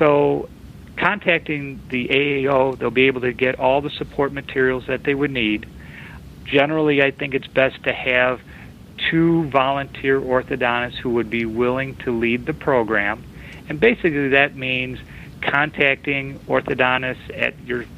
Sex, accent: male, American